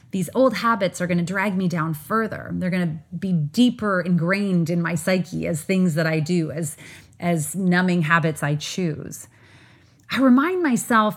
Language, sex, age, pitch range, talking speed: English, female, 30-49, 165-230 Hz, 165 wpm